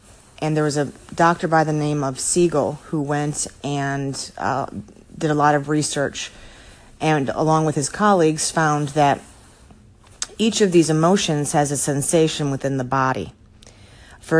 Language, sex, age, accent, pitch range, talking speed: English, female, 30-49, American, 130-160 Hz, 155 wpm